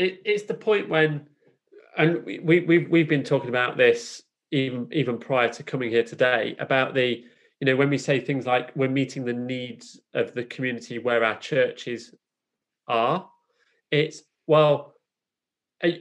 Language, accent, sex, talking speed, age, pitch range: English, British, male, 160 wpm, 30-49, 120-155 Hz